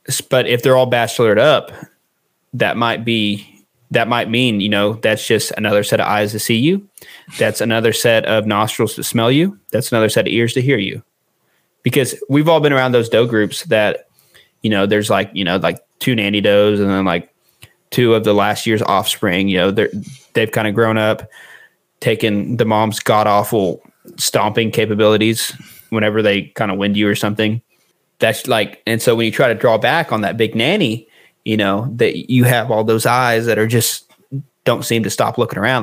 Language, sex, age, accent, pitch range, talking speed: English, male, 20-39, American, 105-120 Hz, 205 wpm